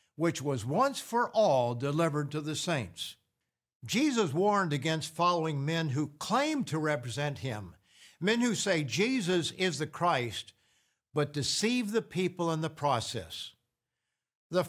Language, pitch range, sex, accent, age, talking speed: English, 135-180 Hz, male, American, 60-79, 140 wpm